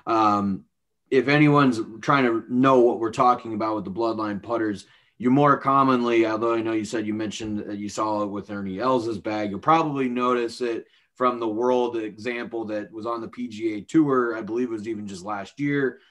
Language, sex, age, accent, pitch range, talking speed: English, male, 30-49, American, 110-130 Hz, 200 wpm